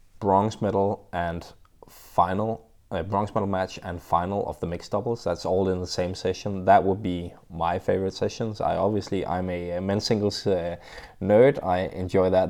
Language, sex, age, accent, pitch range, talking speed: English, male, 20-39, Danish, 90-105 Hz, 180 wpm